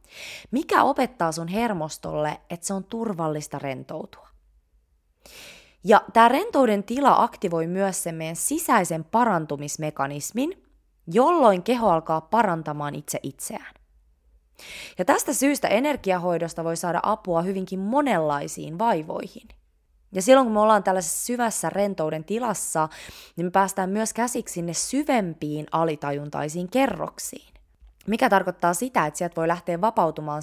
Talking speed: 120 wpm